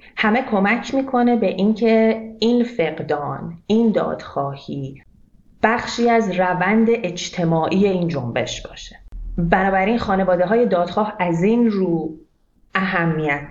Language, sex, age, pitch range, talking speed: Persian, female, 30-49, 160-210 Hz, 105 wpm